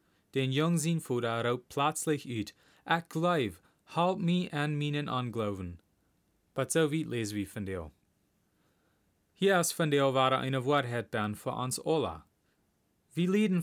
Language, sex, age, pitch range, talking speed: Dutch, male, 30-49, 115-170 Hz, 140 wpm